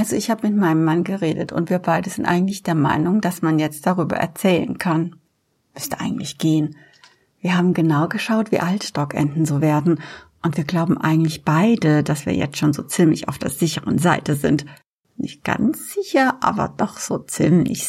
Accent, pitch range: German, 155-215 Hz